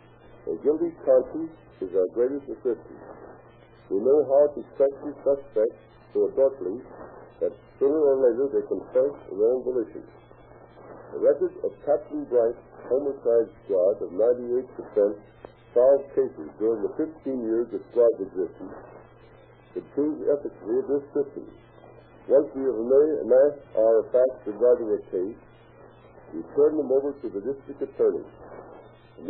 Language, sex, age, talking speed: English, male, 60-79, 145 wpm